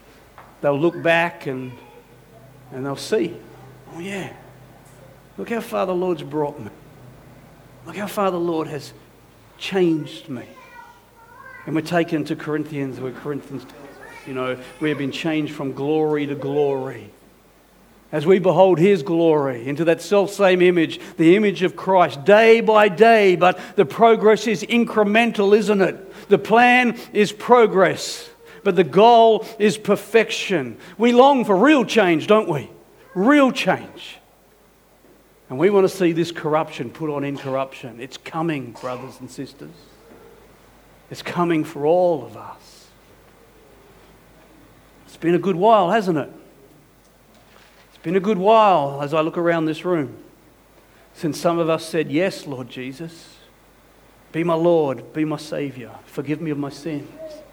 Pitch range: 145-200 Hz